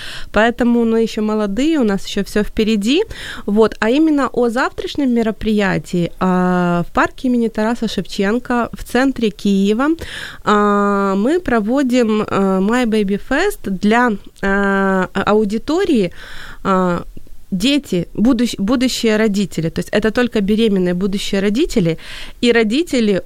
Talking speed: 120 wpm